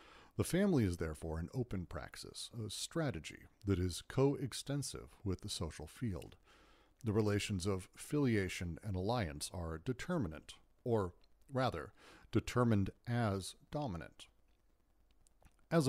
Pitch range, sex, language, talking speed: 90-125 Hz, male, English, 115 wpm